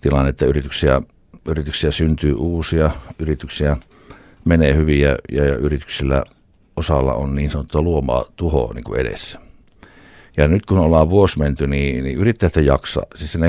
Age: 60-79